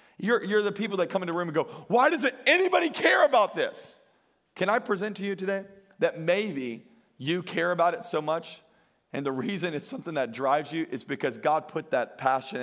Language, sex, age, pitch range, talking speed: English, male, 40-59, 175-225 Hz, 215 wpm